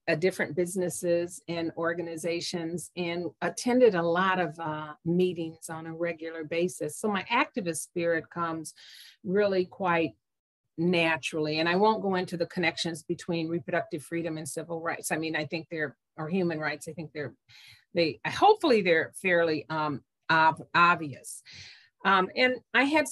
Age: 50-69